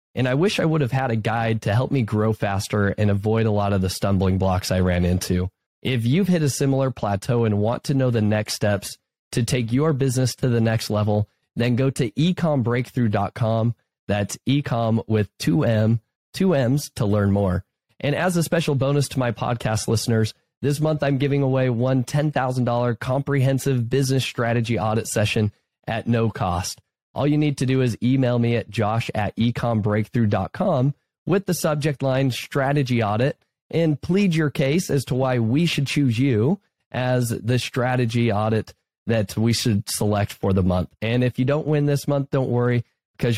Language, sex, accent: English, male, American